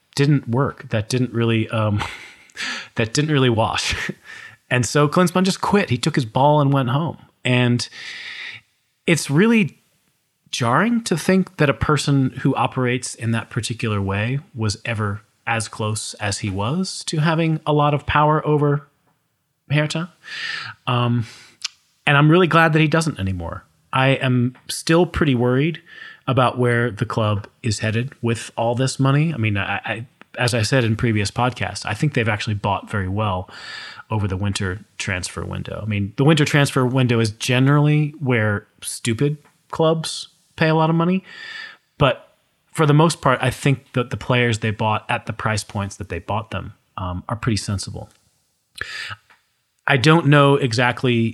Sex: male